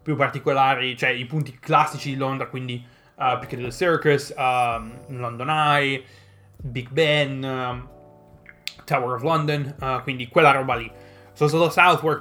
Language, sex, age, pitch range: Italian, male, 20-39, 130-155 Hz